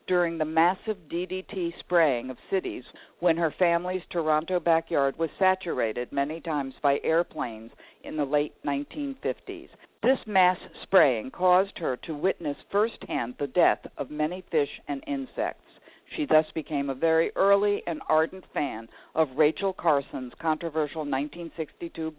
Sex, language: female, English